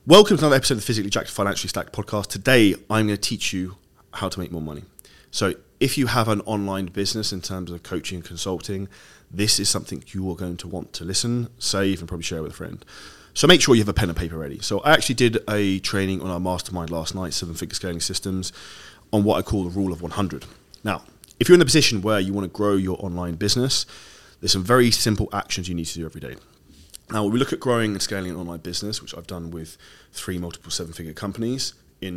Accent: British